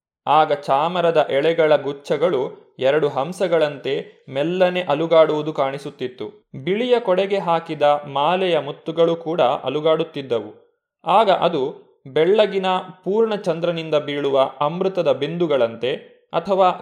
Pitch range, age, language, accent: 150-195 Hz, 20-39, Kannada, native